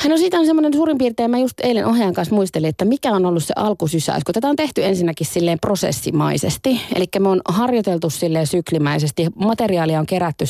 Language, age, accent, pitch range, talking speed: Finnish, 20-39, native, 155-200 Hz, 185 wpm